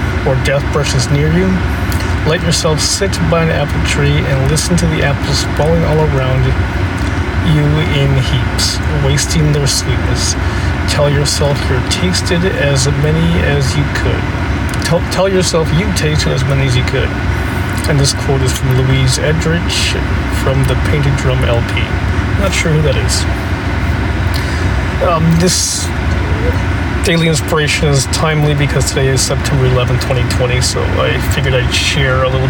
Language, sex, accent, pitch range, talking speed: English, male, American, 90-125 Hz, 150 wpm